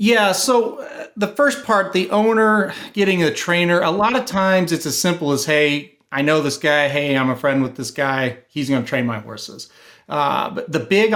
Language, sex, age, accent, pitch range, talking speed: English, male, 40-59, American, 135-175 Hz, 210 wpm